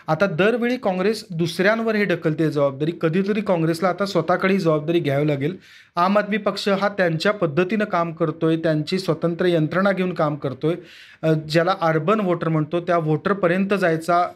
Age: 40-59